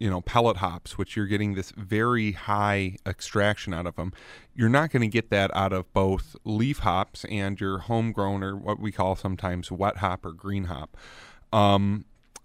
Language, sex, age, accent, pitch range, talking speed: English, male, 30-49, American, 95-110 Hz, 190 wpm